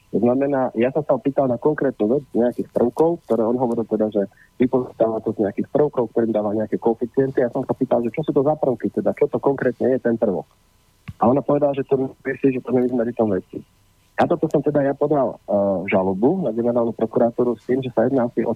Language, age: Slovak, 40-59